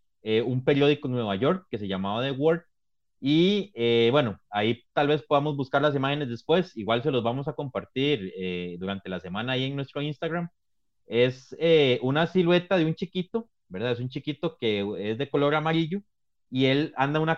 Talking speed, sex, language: 195 wpm, male, Spanish